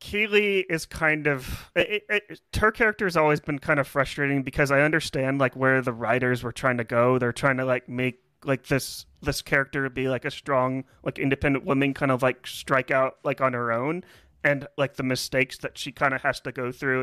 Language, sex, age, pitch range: English, male, 30-49, 130-160 Hz